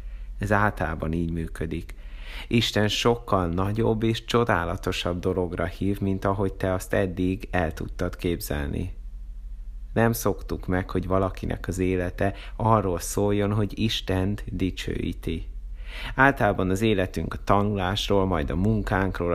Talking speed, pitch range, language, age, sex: 120 wpm, 85-105 Hz, Hungarian, 30-49, male